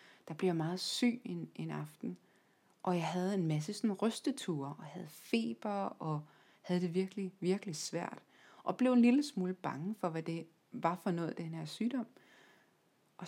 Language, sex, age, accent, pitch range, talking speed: Danish, female, 30-49, native, 160-200 Hz, 175 wpm